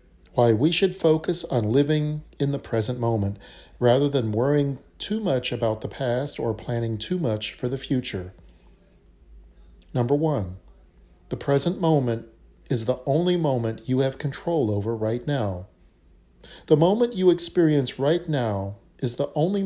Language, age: English, 40-59